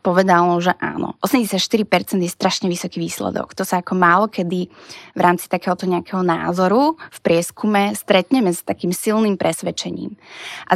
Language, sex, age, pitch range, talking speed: Slovak, female, 20-39, 180-215 Hz, 145 wpm